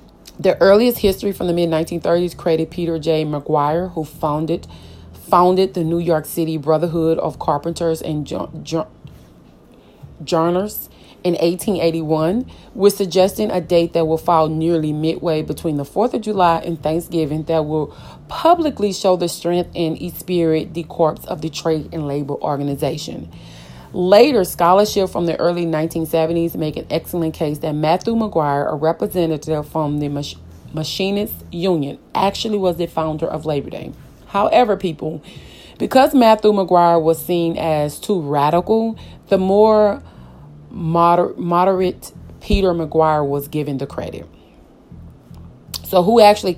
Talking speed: 140 wpm